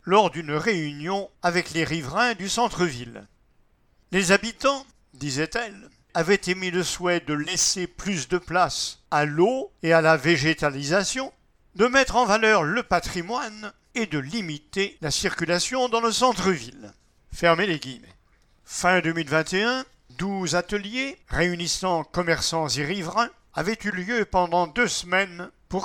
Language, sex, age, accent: English, male, 50-69, French